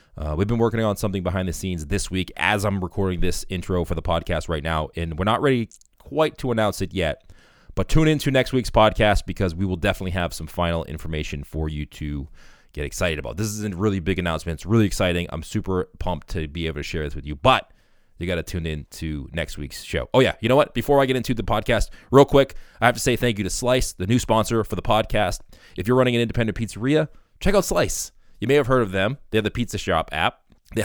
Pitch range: 85-115 Hz